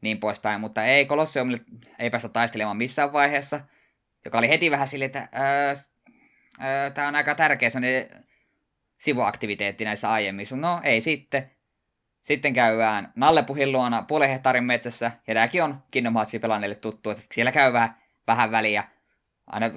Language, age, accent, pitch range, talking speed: Finnish, 20-39, native, 110-140 Hz, 145 wpm